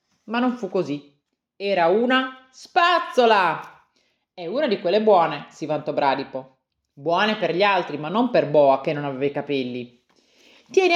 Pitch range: 150-240 Hz